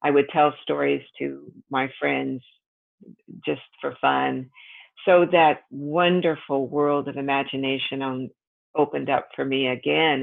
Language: English